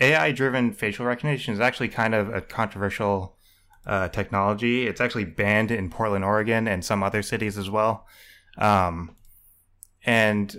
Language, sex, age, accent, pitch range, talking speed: English, male, 20-39, American, 95-115 Hz, 145 wpm